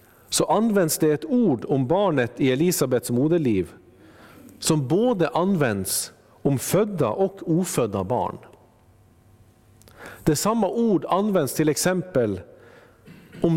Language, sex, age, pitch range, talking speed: Swedish, male, 50-69, 110-165 Hz, 110 wpm